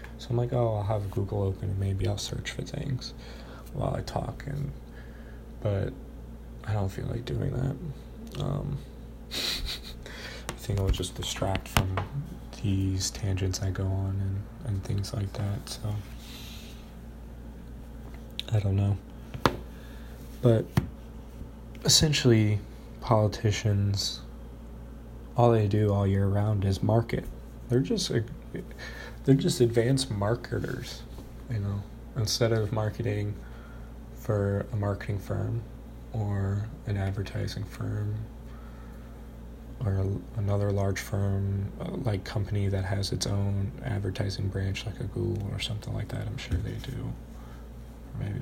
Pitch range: 95-115 Hz